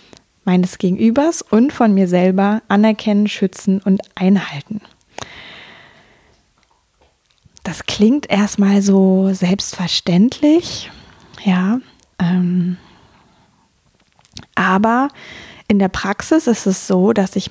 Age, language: 20-39, German